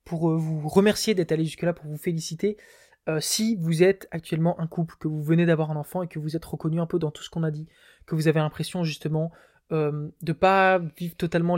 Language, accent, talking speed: French, French, 240 wpm